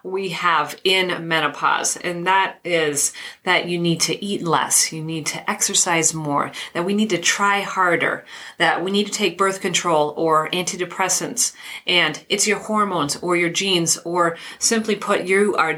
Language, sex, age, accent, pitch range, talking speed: English, female, 40-59, American, 165-200 Hz, 170 wpm